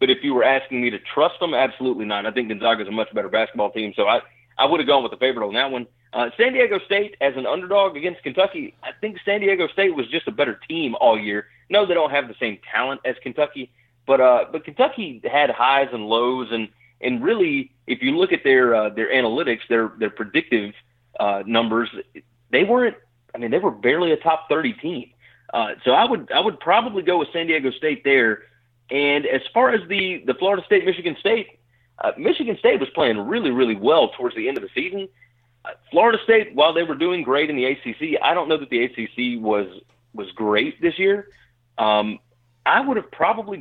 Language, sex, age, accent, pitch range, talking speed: English, male, 30-49, American, 120-200 Hz, 220 wpm